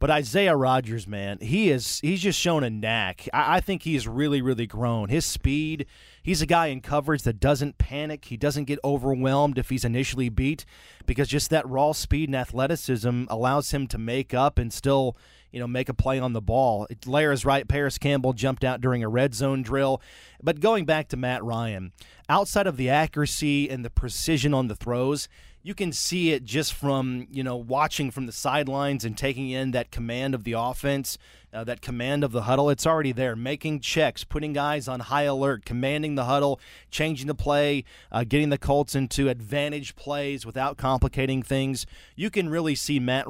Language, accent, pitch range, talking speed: English, American, 125-150 Hz, 200 wpm